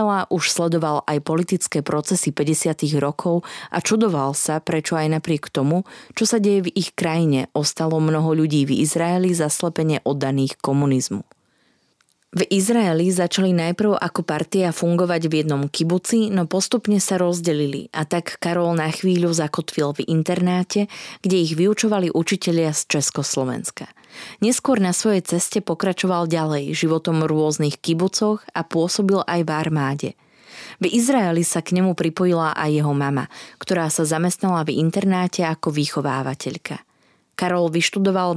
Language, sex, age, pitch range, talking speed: Slovak, female, 20-39, 155-185 Hz, 140 wpm